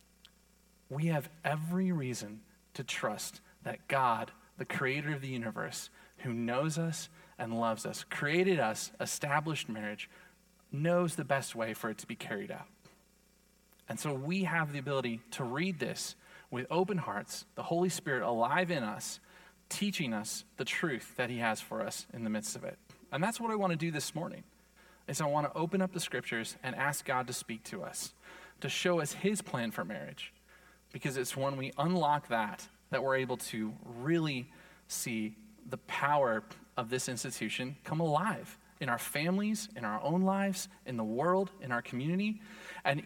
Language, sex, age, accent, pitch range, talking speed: English, male, 30-49, American, 135-185 Hz, 180 wpm